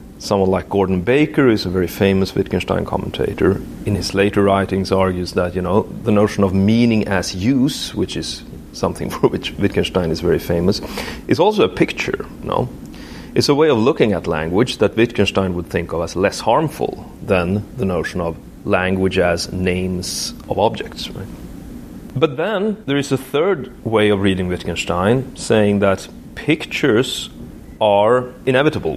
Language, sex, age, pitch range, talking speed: English, male, 30-49, 95-120 Hz, 165 wpm